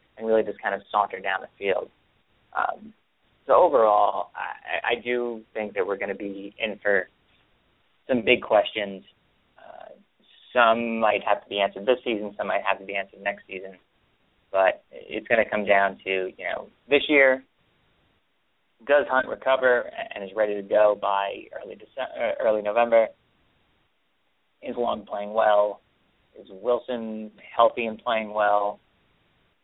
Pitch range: 100-120 Hz